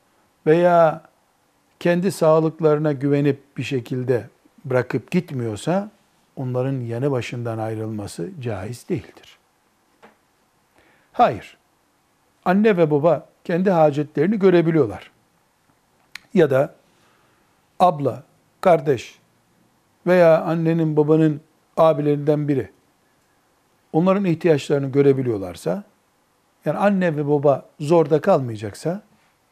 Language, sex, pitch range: Turkish, male, 130-175 Hz